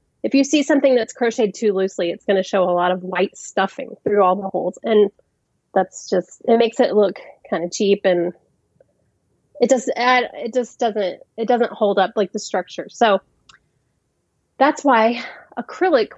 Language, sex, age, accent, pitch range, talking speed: English, female, 30-49, American, 190-250 Hz, 180 wpm